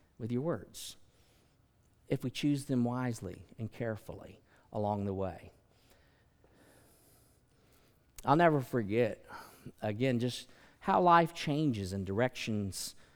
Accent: American